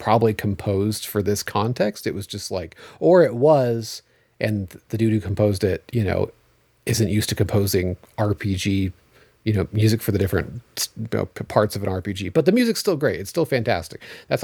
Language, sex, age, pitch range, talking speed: English, male, 30-49, 100-120 Hz, 185 wpm